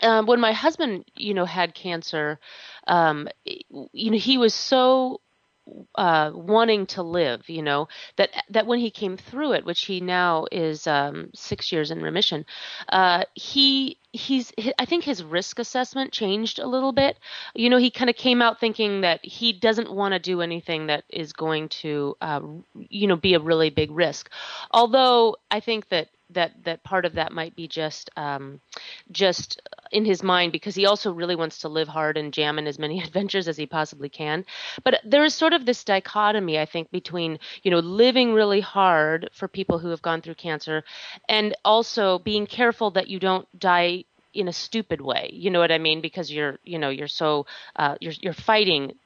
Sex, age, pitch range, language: female, 30-49, 165-225 Hz, English